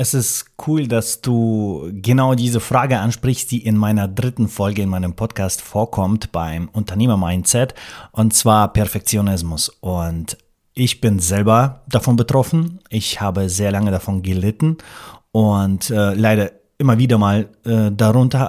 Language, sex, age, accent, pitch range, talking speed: German, male, 30-49, German, 100-125 Hz, 140 wpm